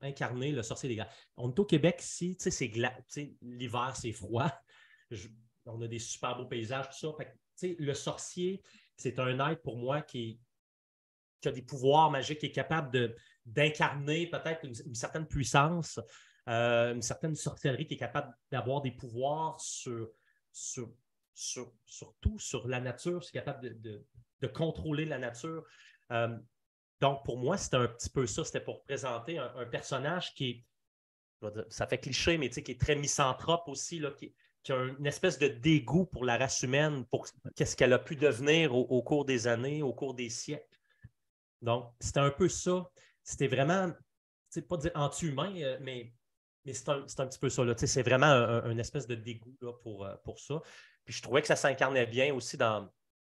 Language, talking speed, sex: French, 190 wpm, male